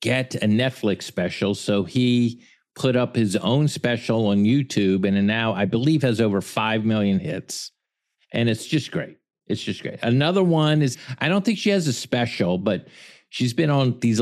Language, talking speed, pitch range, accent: English, 185 wpm, 110-135 Hz, American